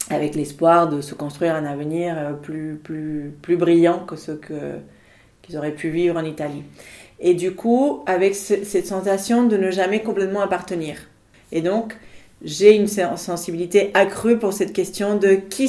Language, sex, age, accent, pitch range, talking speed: French, female, 40-59, French, 165-195 Hz, 165 wpm